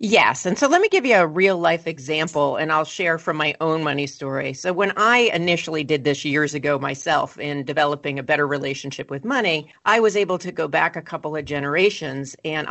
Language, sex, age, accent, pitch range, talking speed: English, female, 40-59, American, 150-195 Hz, 215 wpm